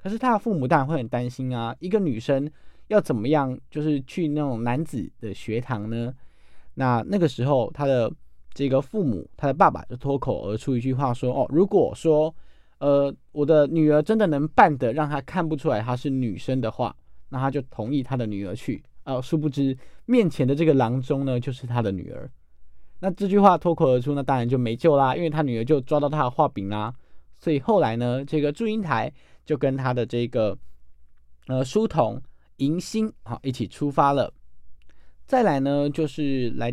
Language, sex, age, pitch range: Chinese, male, 20-39, 120-155 Hz